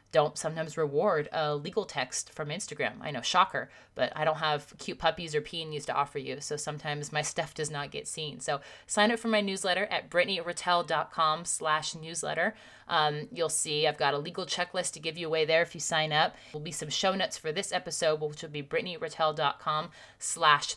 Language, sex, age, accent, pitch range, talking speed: English, female, 30-49, American, 150-185 Hz, 200 wpm